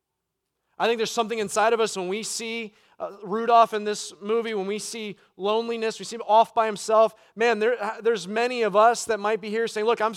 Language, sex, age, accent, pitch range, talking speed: English, male, 30-49, American, 145-220 Hz, 225 wpm